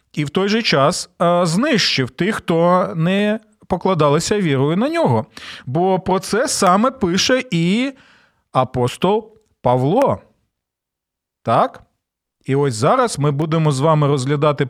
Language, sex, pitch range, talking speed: Ukrainian, male, 130-185 Hz, 125 wpm